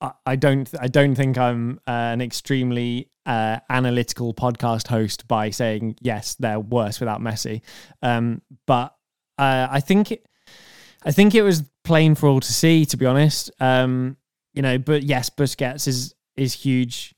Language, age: English, 10-29